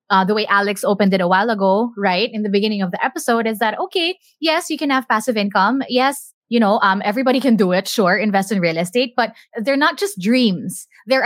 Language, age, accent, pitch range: English, 20-39, Filipino, 195-255 Hz